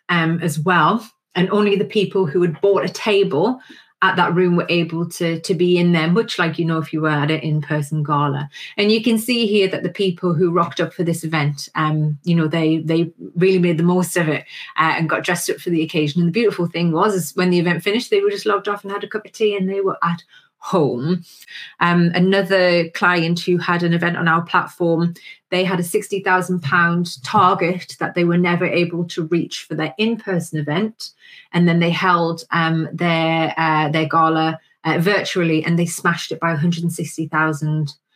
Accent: British